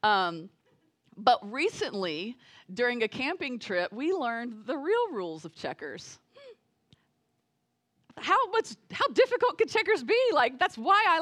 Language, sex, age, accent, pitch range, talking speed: English, female, 30-49, American, 215-310 Hz, 135 wpm